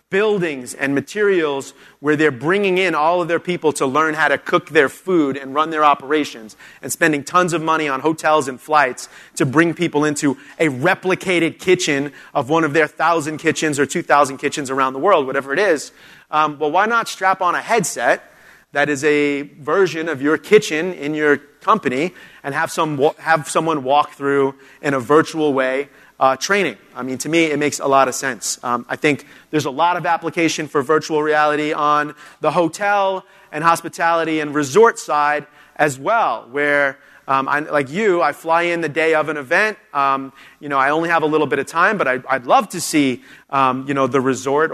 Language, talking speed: English, 200 wpm